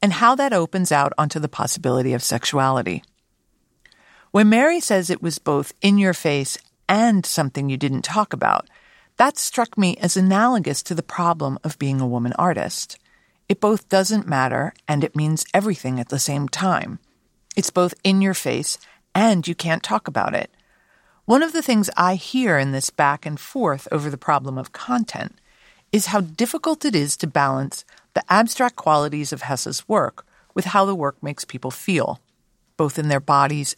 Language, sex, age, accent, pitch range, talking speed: English, female, 50-69, American, 145-210 Hz, 170 wpm